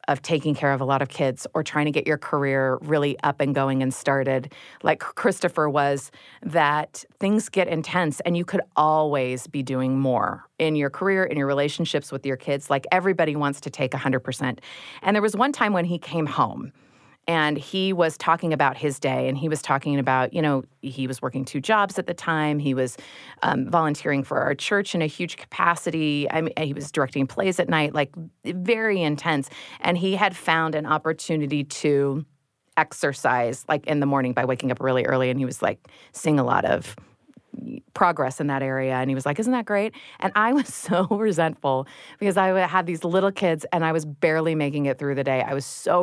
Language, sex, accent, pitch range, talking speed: English, female, American, 140-175 Hz, 210 wpm